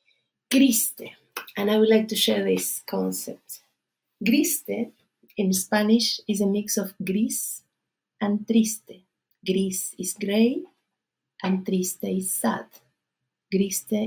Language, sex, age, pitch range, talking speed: English, female, 30-49, 190-235 Hz, 115 wpm